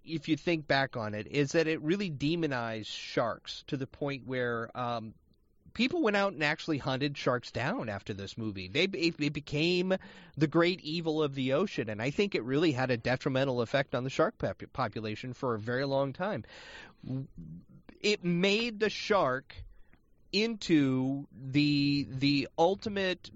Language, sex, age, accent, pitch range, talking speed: English, male, 30-49, American, 120-160 Hz, 160 wpm